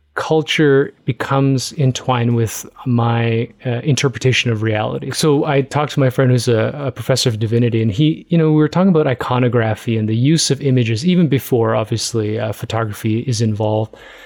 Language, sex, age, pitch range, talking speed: English, male, 30-49, 115-145 Hz, 175 wpm